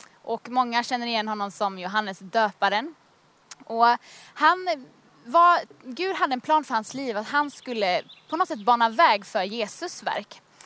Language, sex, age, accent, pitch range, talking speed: Swedish, female, 20-39, native, 225-295 Hz, 165 wpm